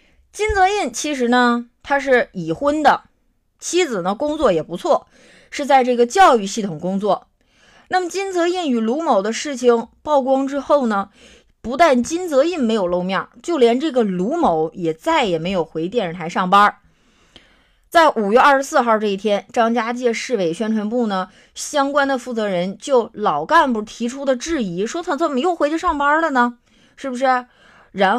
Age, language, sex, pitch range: 30-49, Chinese, female, 205-275 Hz